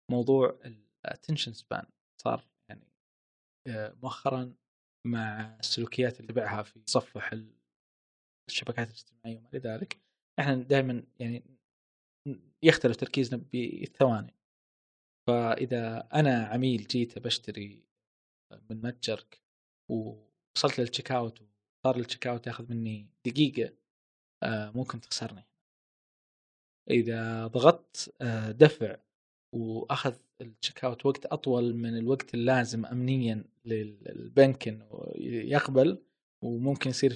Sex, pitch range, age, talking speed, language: male, 110-135 Hz, 20-39, 90 wpm, Arabic